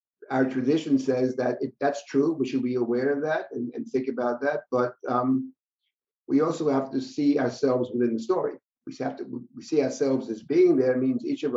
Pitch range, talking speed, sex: 120-140 Hz, 220 wpm, male